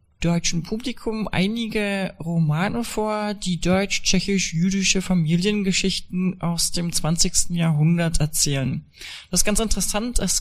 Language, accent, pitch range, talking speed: German, German, 170-200 Hz, 105 wpm